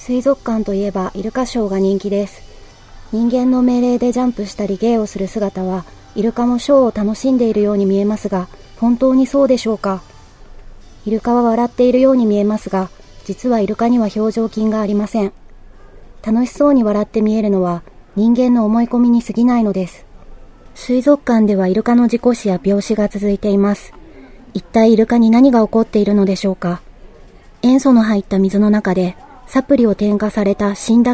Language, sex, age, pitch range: Japanese, female, 30-49, 200-240 Hz